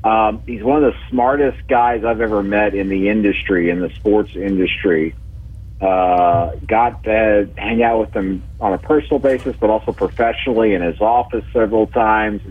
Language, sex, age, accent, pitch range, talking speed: English, male, 50-69, American, 100-120 Hz, 175 wpm